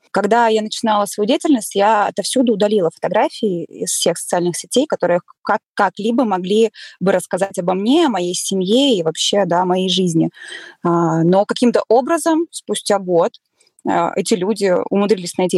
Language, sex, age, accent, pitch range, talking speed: Russian, female, 20-39, native, 175-230 Hz, 145 wpm